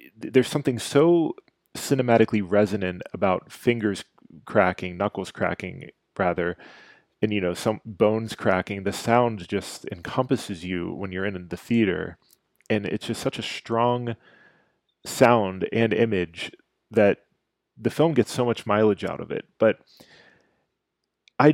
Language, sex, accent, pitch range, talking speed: English, male, American, 100-120 Hz, 135 wpm